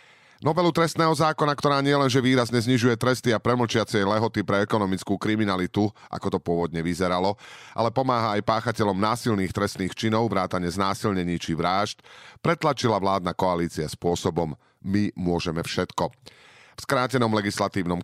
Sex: male